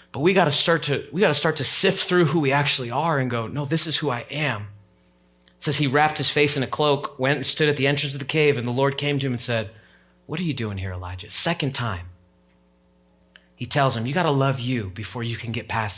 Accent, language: American, English